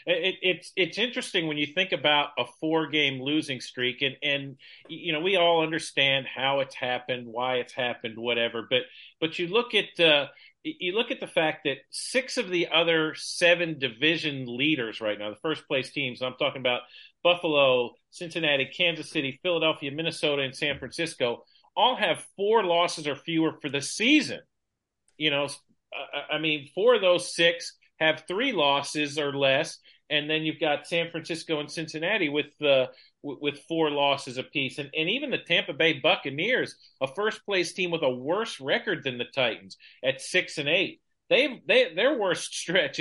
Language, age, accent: English, 40-59, American